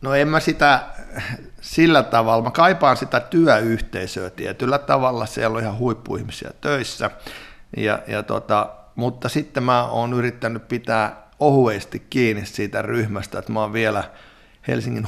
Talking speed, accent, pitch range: 140 wpm, native, 100-115 Hz